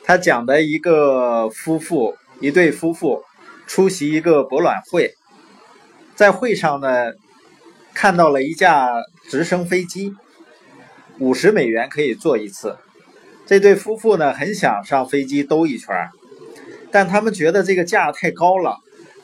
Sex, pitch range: male, 150-215 Hz